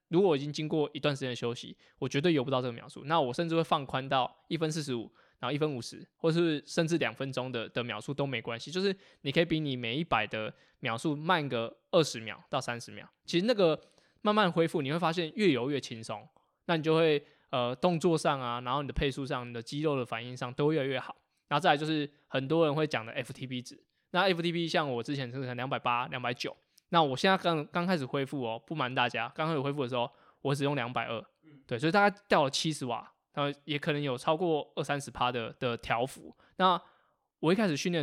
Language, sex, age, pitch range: Chinese, male, 20-39, 125-165 Hz